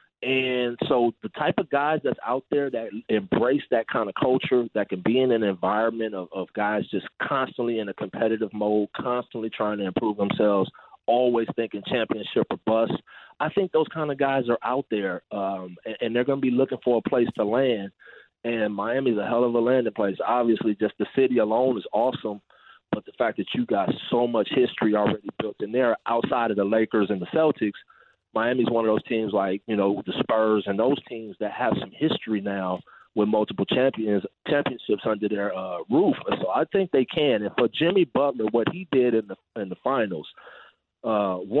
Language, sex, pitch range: English, male, 105-125 Hz